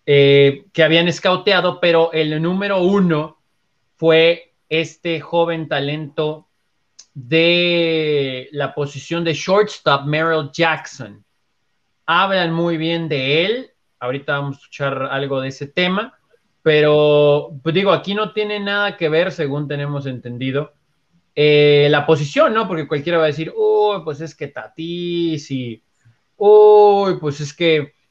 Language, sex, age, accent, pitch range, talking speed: Spanish, male, 30-49, Mexican, 145-175 Hz, 135 wpm